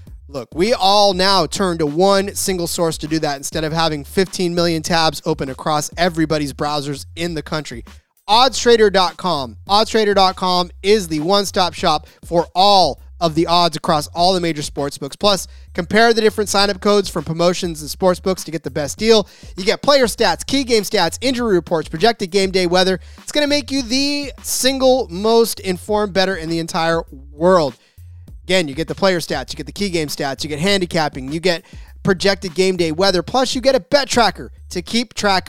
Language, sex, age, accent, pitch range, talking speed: English, male, 30-49, American, 150-205 Hz, 195 wpm